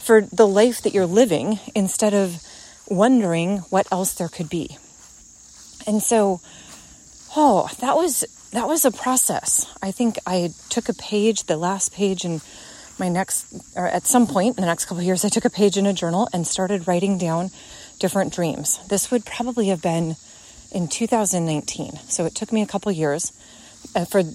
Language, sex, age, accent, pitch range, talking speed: English, female, 30-49, American, 175-235 Hz, 180 wpm